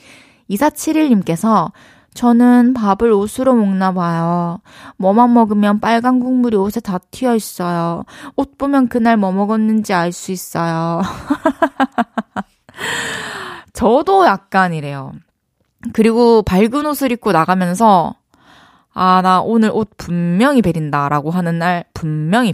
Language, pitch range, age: Korean, 175-240 Hz, 20-39